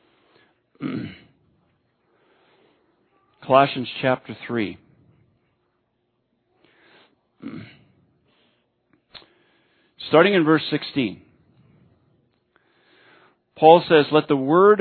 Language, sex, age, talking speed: English, male, 50-69, 50 wpm